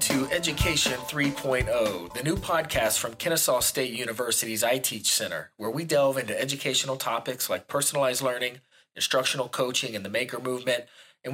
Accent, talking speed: American, 150 wpm